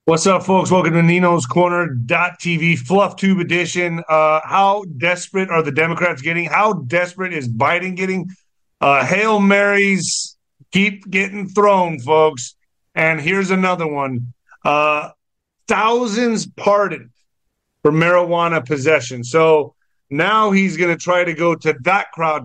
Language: English